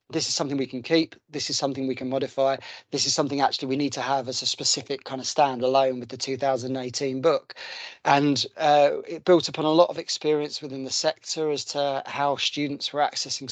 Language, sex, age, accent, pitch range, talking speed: English, male, 30-49, British, 135-155 Hz, 215 wpm